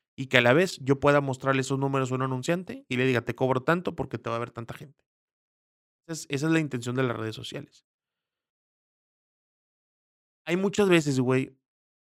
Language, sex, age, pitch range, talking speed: Spanish, male, 30-49, 140-185 Hz, 190 wpm